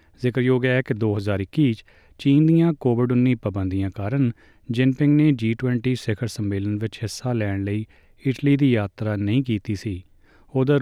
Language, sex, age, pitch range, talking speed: Punjabi, male, 30-49, 100-130 Hz, 145 wpm